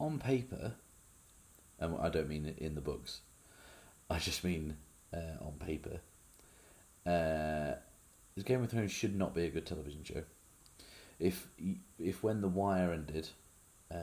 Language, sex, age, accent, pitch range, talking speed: English, male, 30-49, British, 75-90 Hz, 135 wpm